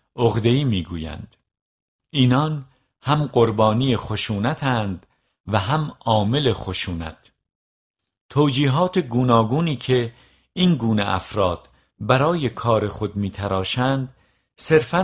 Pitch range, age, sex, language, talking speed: 100-130 Hz, 50-69, male, Persian, 90 wpm